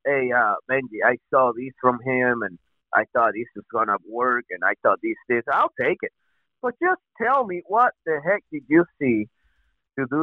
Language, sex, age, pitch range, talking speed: English, male, 30-49, 125-165 Hz, 210 wpm